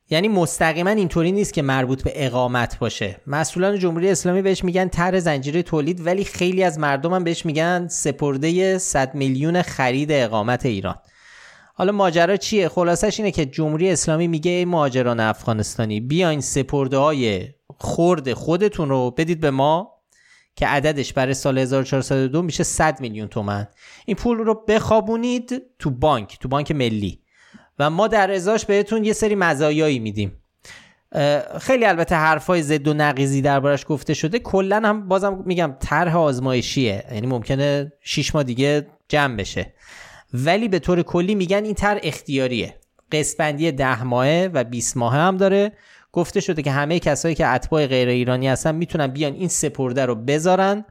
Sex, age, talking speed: male, 30-49, 155 wpm